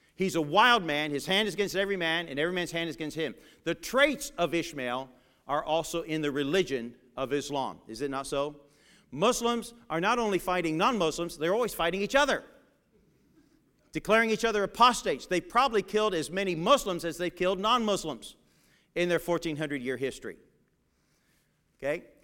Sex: male